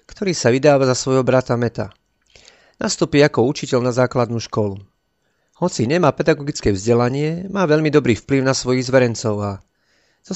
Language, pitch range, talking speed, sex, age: Slovak, 110-145 Hz, 150 wpm, male, 40-59